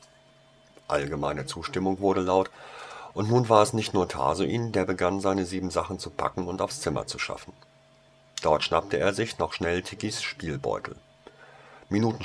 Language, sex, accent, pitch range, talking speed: German, male, German, 85-105 Hz, 155 wpm